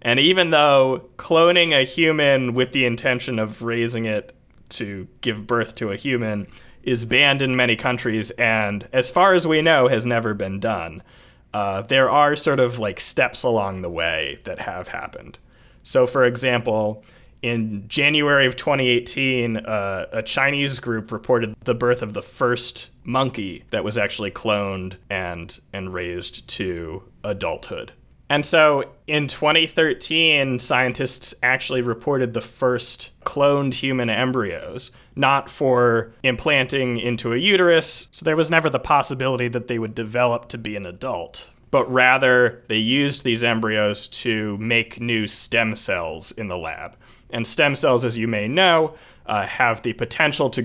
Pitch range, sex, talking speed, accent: 110-135 Hz, male, 155 wpm, American